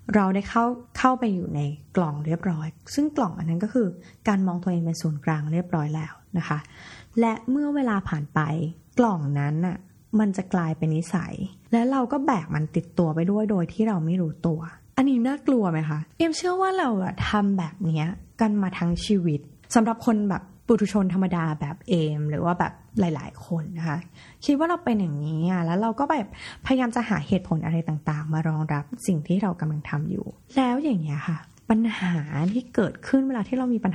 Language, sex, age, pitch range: Thai, female, 20-39, 160-225 Hz